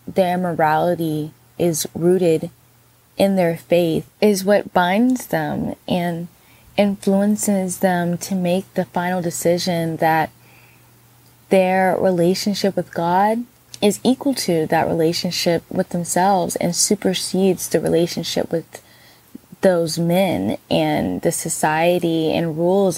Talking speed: 110 wpm